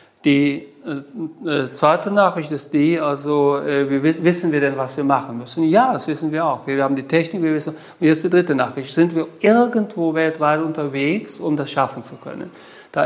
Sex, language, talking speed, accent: male, German, 200 wpm, German